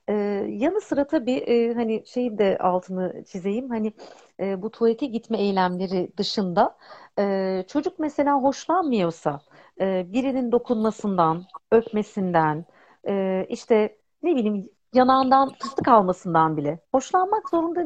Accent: native